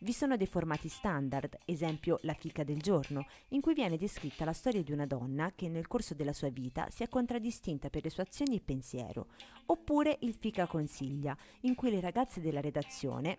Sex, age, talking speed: female, 30-49, 195 wpm